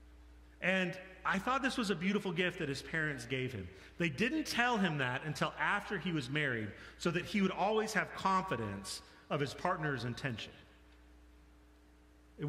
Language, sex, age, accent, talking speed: English, male, 40-59, American, 170 wpm